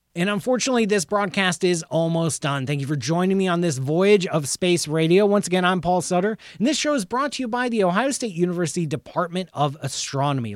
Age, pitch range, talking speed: 30-49, 135-190 Hz, 215 wpm